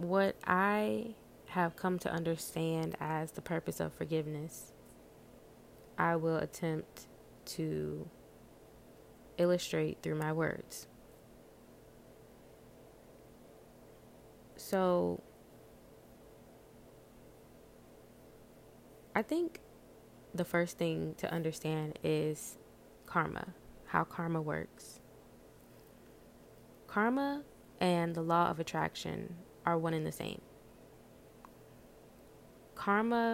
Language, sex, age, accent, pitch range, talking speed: English, female, 20-39, American, 150-180 Hz, 80 wpm